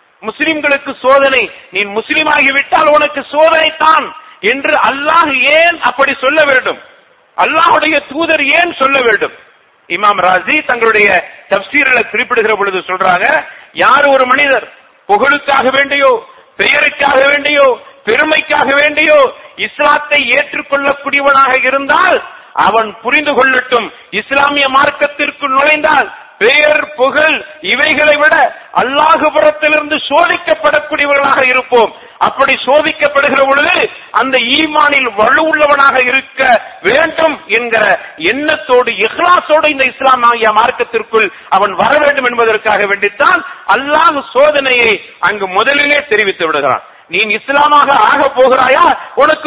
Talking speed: 80 wpm